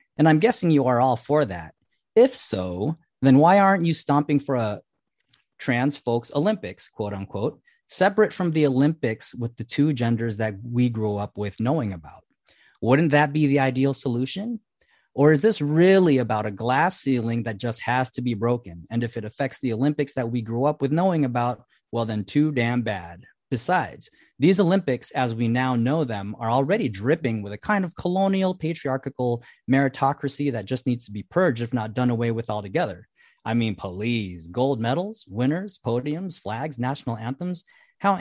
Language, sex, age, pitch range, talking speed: English, male, 30-49, 115-160 Hz, 180 wpm